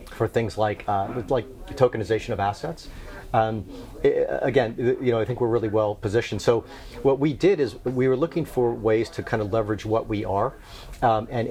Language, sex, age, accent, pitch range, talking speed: English, male, 40-59, American, 105-125 Hz, 200 wpm